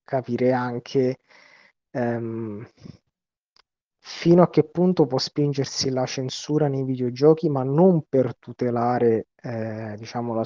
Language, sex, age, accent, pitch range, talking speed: Italian, male, 30-49, native, 115-135 Hz, 105 wpm